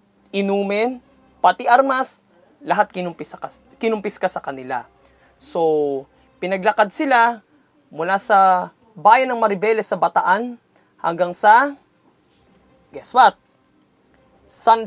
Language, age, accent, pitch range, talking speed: Filipino, 20-39, native, 165-220 Hz, 100 wpm